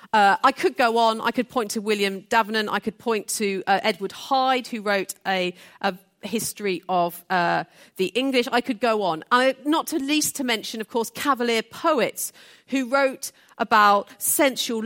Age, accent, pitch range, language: 40-59, British, 200-270 Hz, English